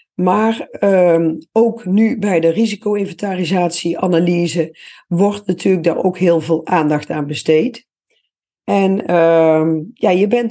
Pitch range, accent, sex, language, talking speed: 170-220 Hz, Dutch, female, Dutch, 120 wpm